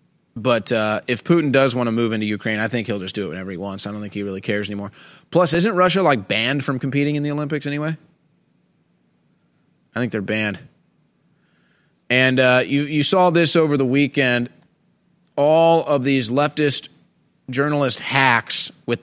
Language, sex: English, male